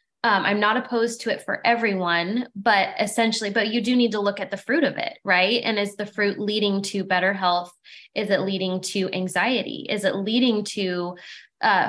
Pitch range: 190-230 Hz